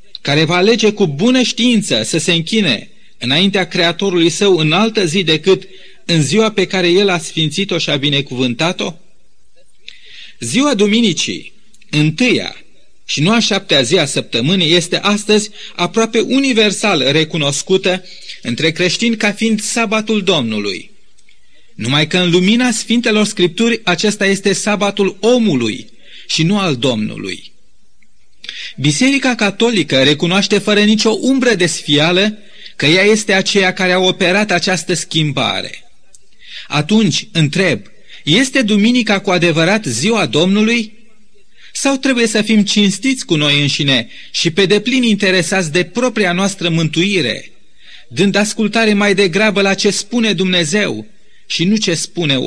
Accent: native